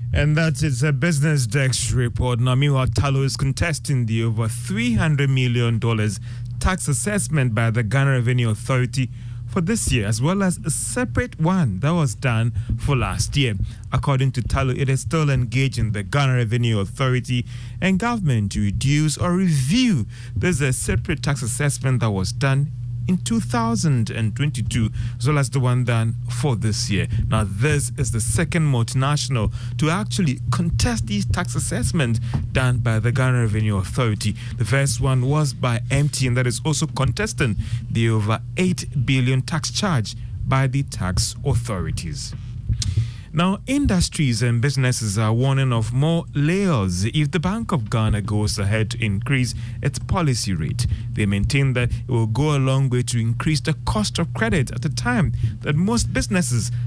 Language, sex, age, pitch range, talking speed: English, male, 30-49, 115-140 Hz, 165 wpm